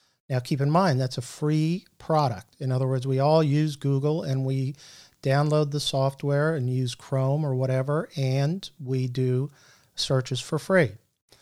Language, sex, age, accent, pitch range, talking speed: English, male, 50-69, American, 130-150 Hz, 165 wpm